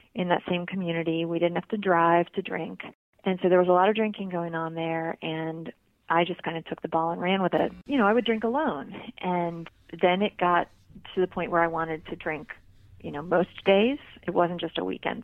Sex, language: female, English